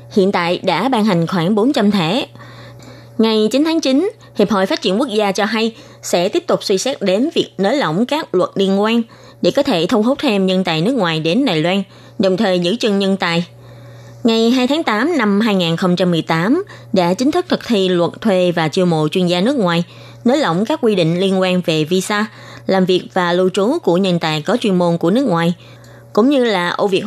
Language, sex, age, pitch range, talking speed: Vietnamese, female, 20-39, 180-235 Hz, 220 wpm